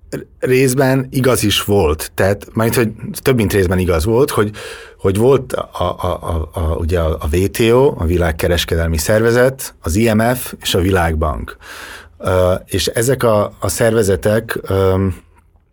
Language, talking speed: Hungarian, 140 wpm